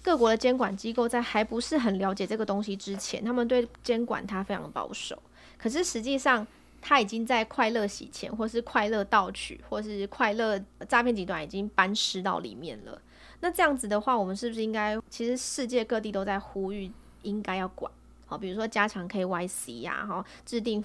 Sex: female